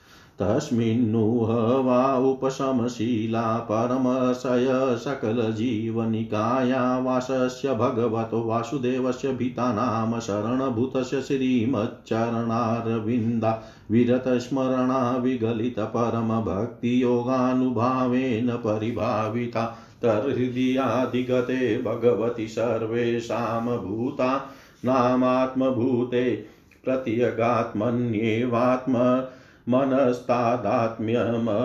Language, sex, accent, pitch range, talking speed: Hindi, male, native, 115-130 Hz, 40 wpm